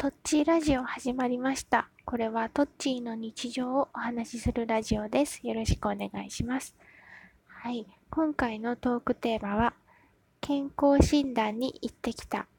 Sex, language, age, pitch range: female, Japanese, 20-39, 220-265 Hz